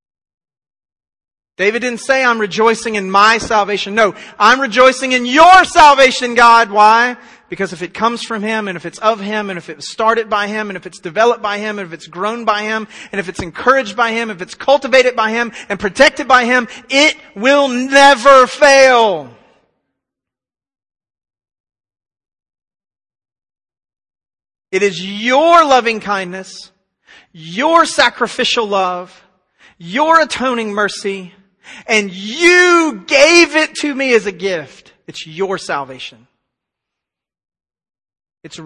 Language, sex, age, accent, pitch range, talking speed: English, male, 40-59, American, 165-245 Hz, 140 wpm